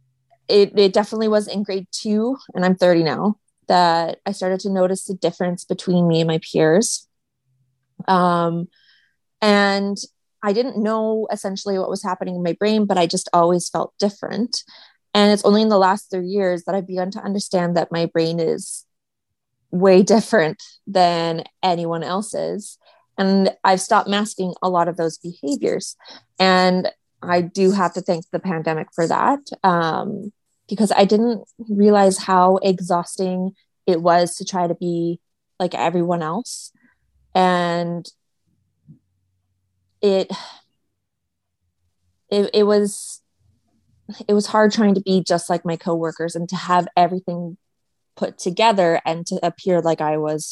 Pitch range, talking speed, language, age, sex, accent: 170-205 Hz, 150 wpm, English, 20-39, female, American